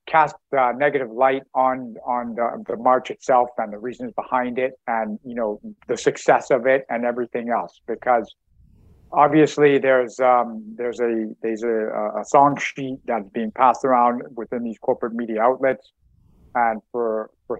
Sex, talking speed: male, 165 wpm